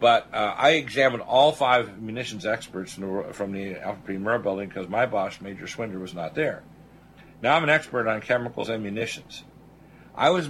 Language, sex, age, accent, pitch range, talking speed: English, male, 60-79, American, 105-130 Hz, 190 wpm